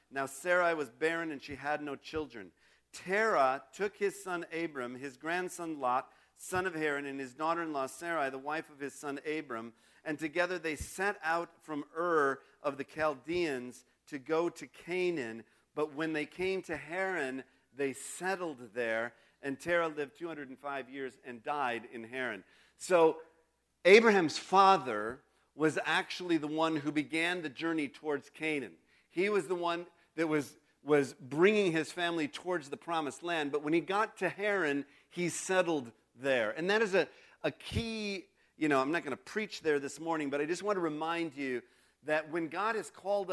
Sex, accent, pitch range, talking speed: male, American, 145-180 Hz, 175 wpm